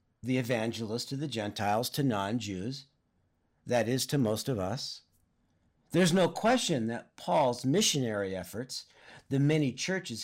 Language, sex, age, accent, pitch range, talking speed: English, male, 50-69, American, 120-165 Hz, 135 wpm